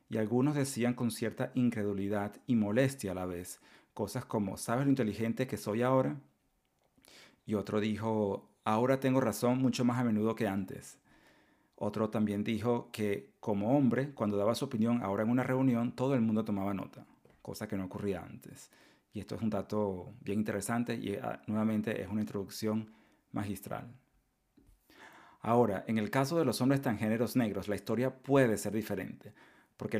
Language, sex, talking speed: Spanish, male, 170 wpm